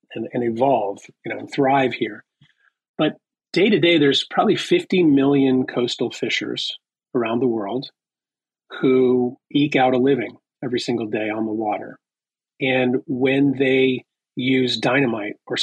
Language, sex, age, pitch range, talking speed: English, male, 40-59, 120-140 Hz, 145 wpm